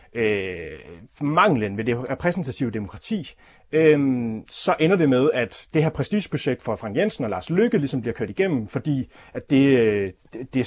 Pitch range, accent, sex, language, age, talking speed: 125-170 Hz, native, male, Danish, 30-49, 165 wpm